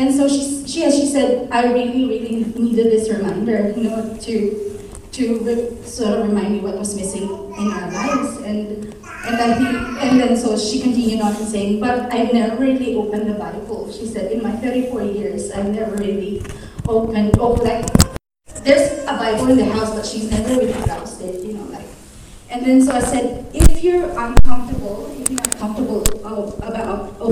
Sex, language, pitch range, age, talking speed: female, English, 215-255 Hz, 20-39, 185 wpm